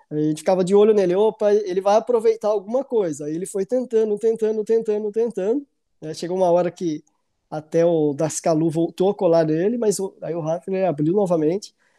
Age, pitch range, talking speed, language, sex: 20-39, 165-215 Hz, 195 wpm, Portuguese, male